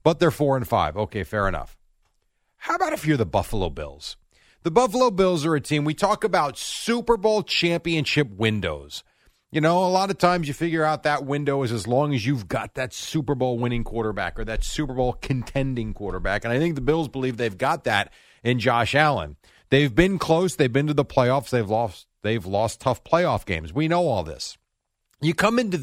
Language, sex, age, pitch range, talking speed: English, male, 40-59, 110-165 Hz, 210 wpm